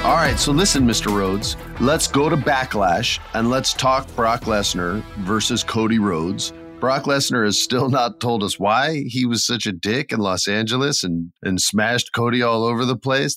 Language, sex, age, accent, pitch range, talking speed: English, male, 40-59, American, 105-135 Hz, 190 wpm